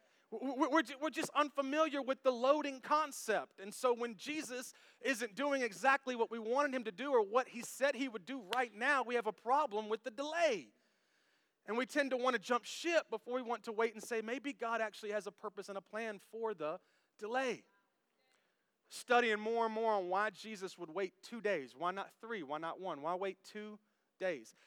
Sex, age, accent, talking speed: male, 30-49, American, 205 wpm